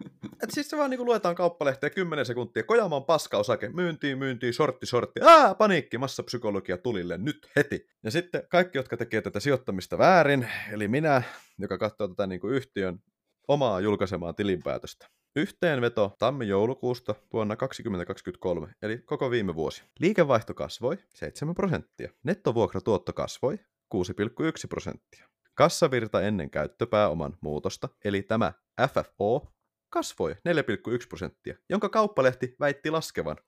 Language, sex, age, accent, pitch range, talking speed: Finnish, male, 30-49, native, 100-155 Hz, 135 wpm